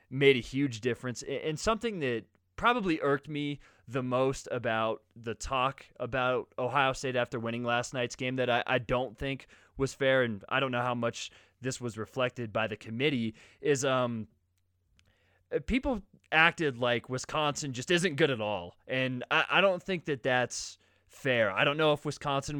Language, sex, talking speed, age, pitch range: English, male, 175 wpm, 20-39, 120-145 Hz